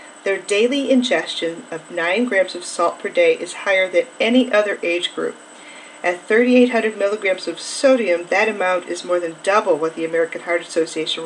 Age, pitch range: 40-59, 175-240 Hz